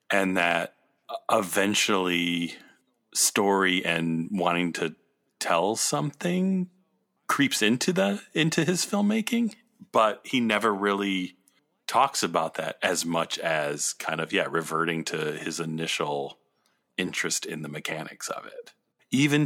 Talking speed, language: 120 wpm, English